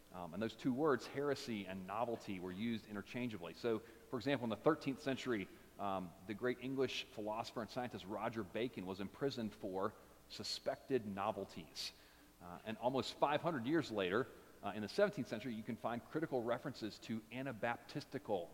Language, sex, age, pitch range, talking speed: English, male, 40-59, 95-130 Hz, 160 wpm